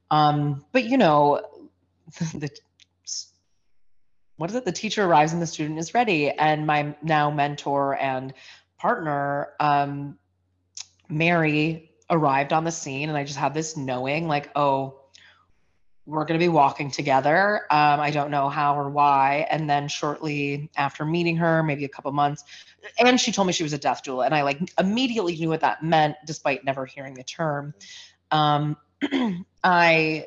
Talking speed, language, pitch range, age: 165 wpm, English, 140-160 Hz, 30-49